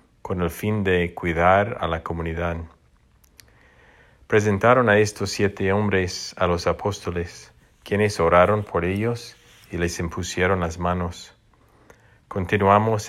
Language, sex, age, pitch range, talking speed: English, male, 50-69, 90-105 Hz, 120 wpm